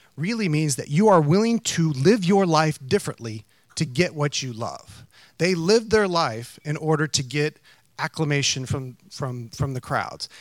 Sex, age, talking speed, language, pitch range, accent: male, 30-49, 175 wpm, English, 120-155 Hz, American